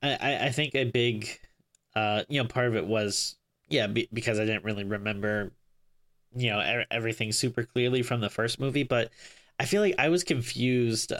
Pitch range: 110-135 Hz